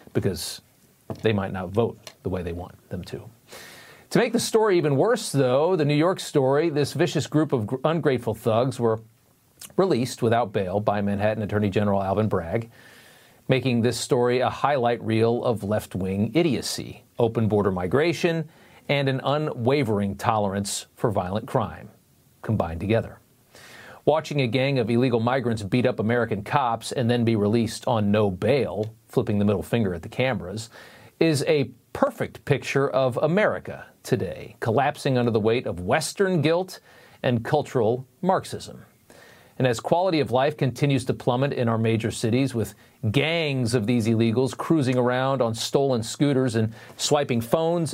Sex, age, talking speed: male, 40-59, 155 wpm